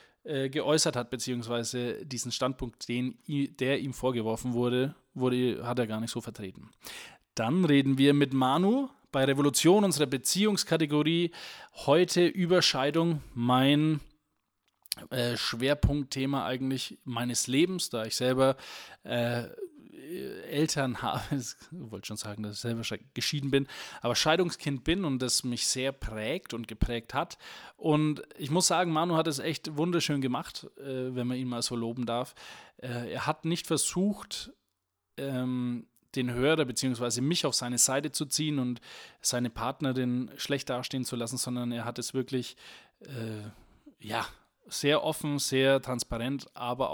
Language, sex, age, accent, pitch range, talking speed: German, male, 20-39, German, 120-145 Hz, 135 wpm